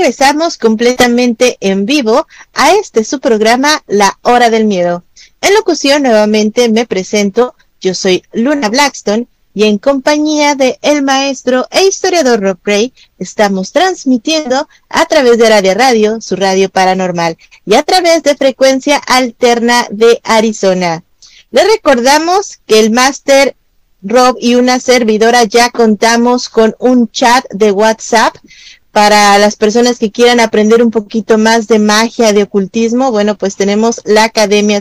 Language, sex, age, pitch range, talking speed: Spanish, female, 30-49, 215-260 Hz, 145 wpm